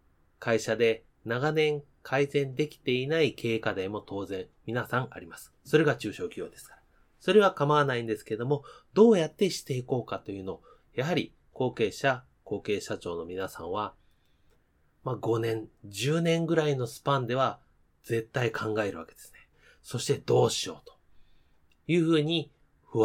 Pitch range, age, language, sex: 110-150 Hz, 30-49, Japanese, male